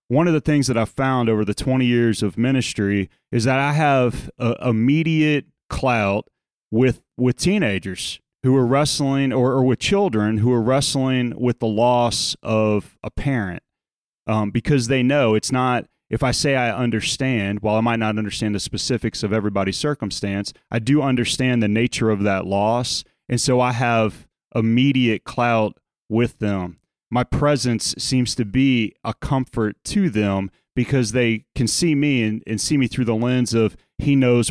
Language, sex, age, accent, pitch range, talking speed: English, male, 30-49, American, 110-130 Hz, 170 wpm